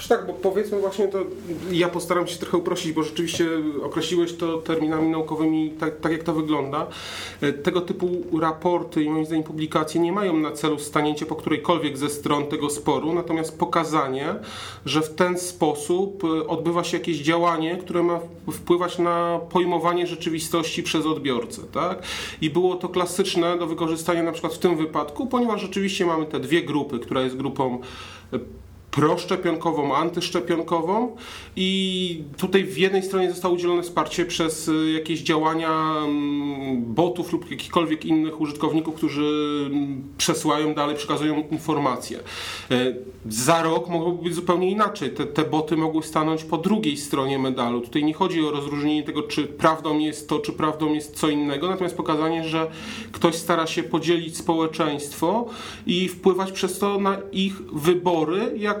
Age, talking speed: 40-59, 150 wpm